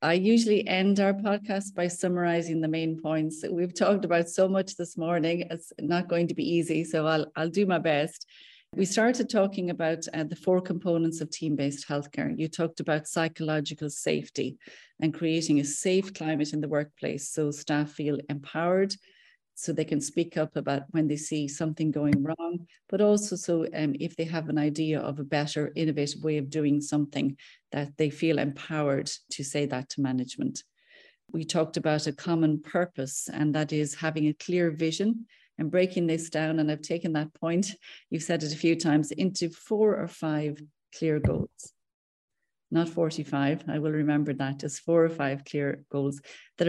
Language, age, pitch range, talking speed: English, 30-49, 150-175 Hz, 185 wpm